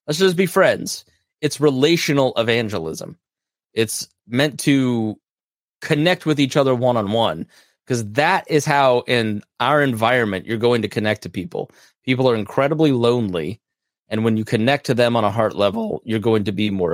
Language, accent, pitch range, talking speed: English, American, 110-135 Hz, 165 wpm